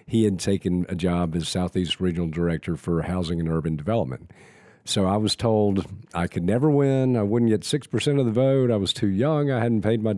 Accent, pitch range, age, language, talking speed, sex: American, 90-110 Hz, 50-69, English, 220 wpm, male